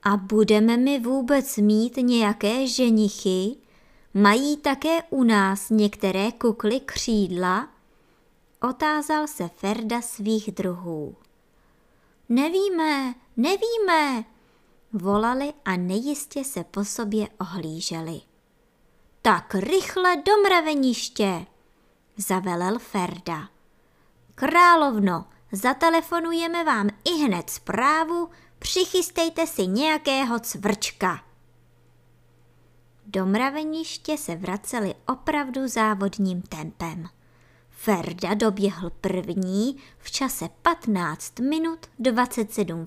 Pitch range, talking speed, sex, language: 195-280 Hz, 80 wpm, male, Czech